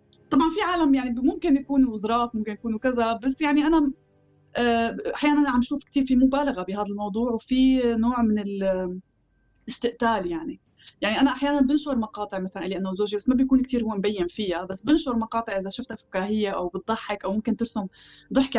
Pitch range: 205-270 Hz